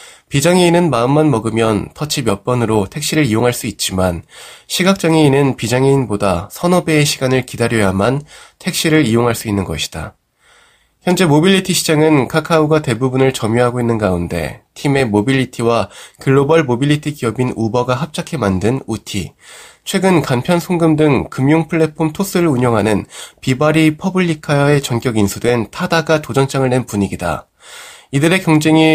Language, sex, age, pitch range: Korean, male, 20-39, 115-160 Hz